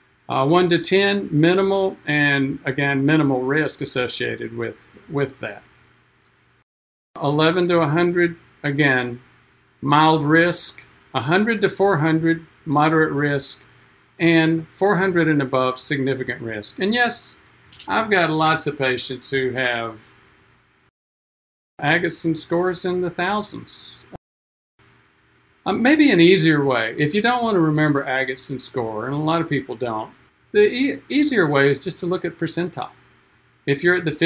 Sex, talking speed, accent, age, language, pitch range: male, 135 wpm, American, 50-69, English, 135-170 Hz